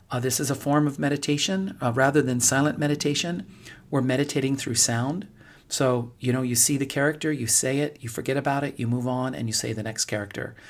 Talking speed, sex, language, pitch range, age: 220 wpm, male, English, 125-150 Hz, 40-59